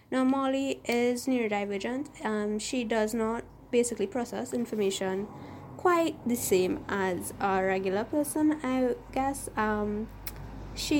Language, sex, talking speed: English, female, 120 wpm